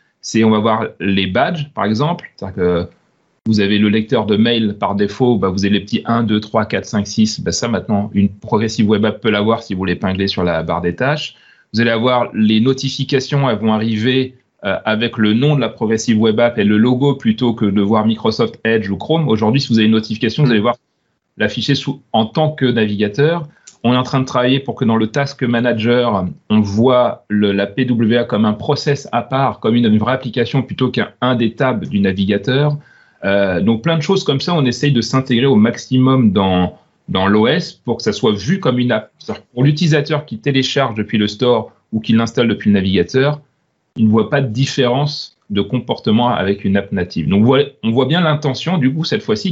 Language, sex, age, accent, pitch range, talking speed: French, male, 30-49, French, 110-135 Hz, 220 wpm